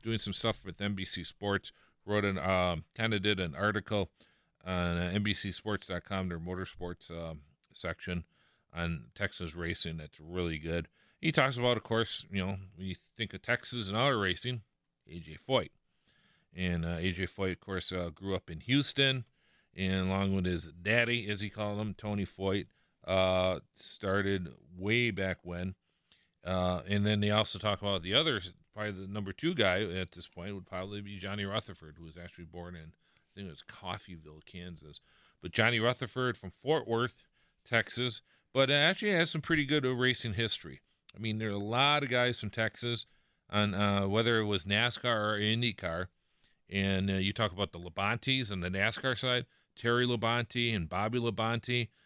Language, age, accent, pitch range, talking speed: English, 40-59, American, 90-115 Hz, 175 wpm